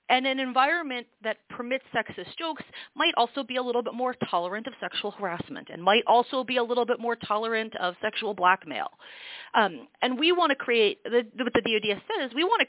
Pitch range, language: 205-265 Hz, English